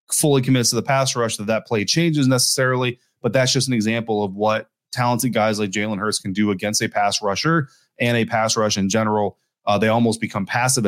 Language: English